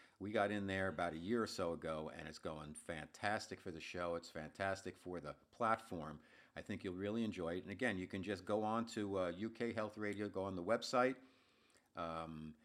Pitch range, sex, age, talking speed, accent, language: 85-105 Hz, male, 50-69, 215 wpm, American, English